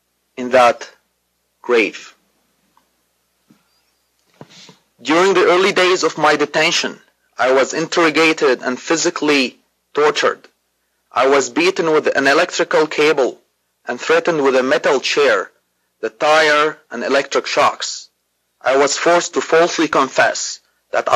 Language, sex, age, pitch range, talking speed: English, male, 30-49, 120-180 Hz, 115 wpm